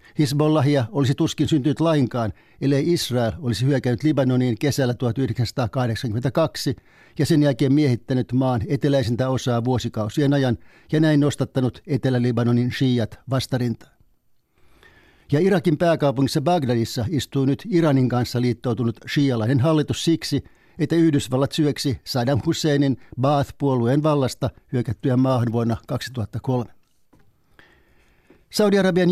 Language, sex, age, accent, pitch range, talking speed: Finnish, male, 60-79, native, 120-150 Hz, 105 wpm